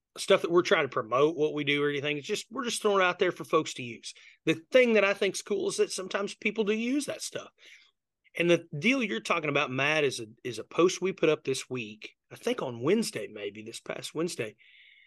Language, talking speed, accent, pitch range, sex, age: English, 245 wpm, American, 130-205 Hz, male, 30-49